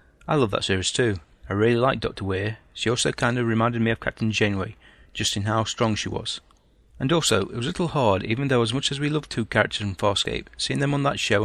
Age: 30-49